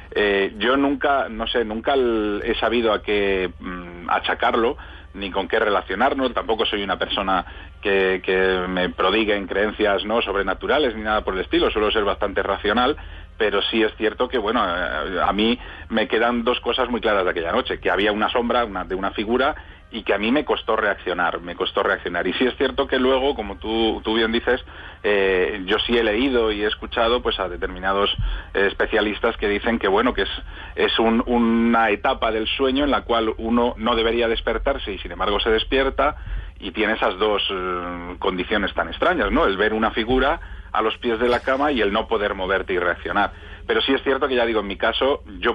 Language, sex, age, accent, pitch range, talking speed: English, male, 40-59, Spanish, 100-120 Hz, 205 wpm